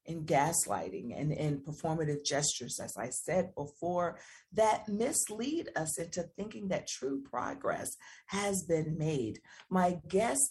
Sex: female